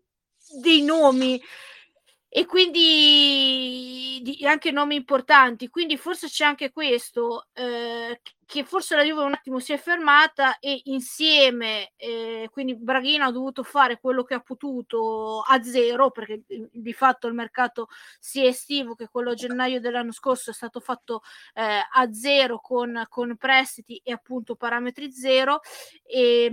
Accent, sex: native, female